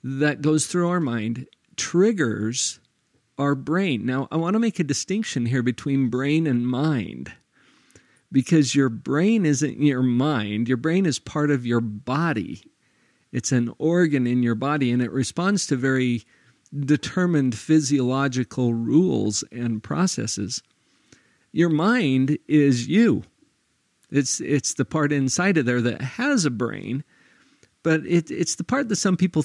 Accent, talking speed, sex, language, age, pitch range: American, 145 wpm, male, English, 50-69, 120-155 Hz